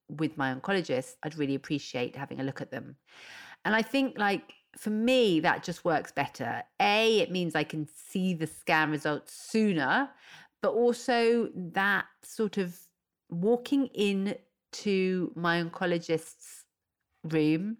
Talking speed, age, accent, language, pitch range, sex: 140 wpm, 40-59, British, English, 160-210 Hz, female